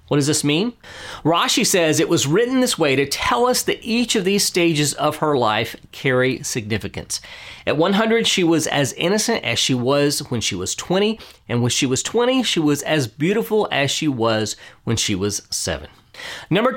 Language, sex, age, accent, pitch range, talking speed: English, male, 40-59, American, 115-190 Hz, 195 wpm